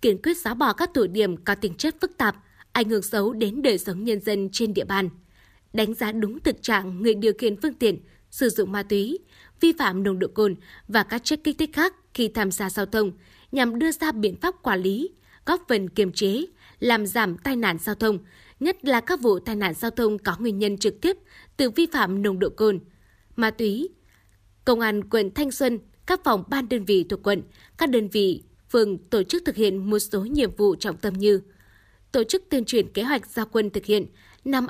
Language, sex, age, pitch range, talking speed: Vietnamese, female, 20-39, 200-250 Hz, 225 wpm